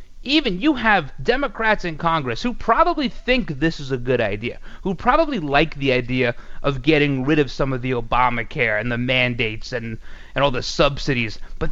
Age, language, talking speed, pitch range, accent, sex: 30-49, English, 185 wpm, 140-205 Hz, American, male